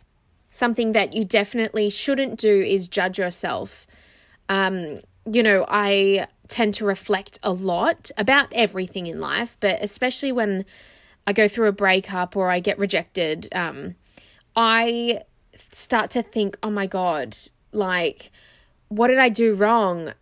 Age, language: 10-29, English